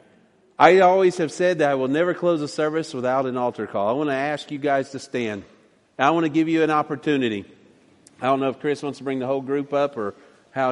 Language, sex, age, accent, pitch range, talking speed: English, male, 40-59, American, 135-160 Hz, 245 wpm